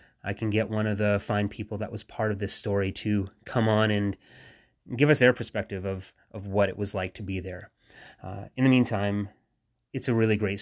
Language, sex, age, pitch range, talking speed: English, male, 30-49, 105-115 Hz, 220 wpm